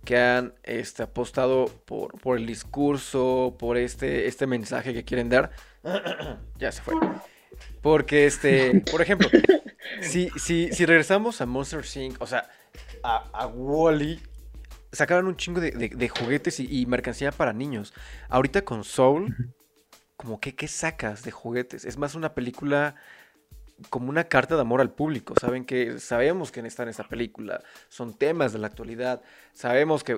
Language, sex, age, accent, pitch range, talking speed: Spanish, male, 20-39, Mexican, 120-150 Hz, 165 wpm